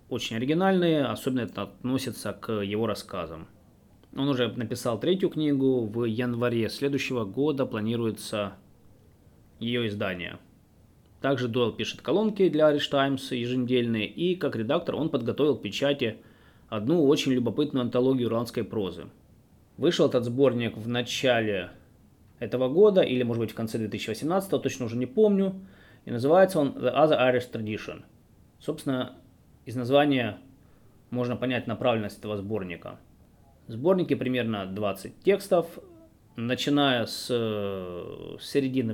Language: Russian